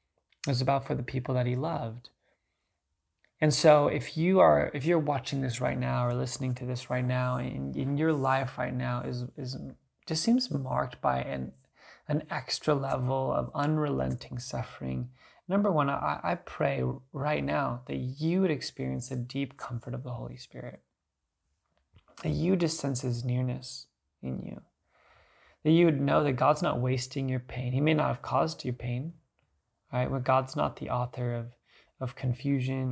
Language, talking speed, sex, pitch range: English, 175 wpm, male, 120-140 Hz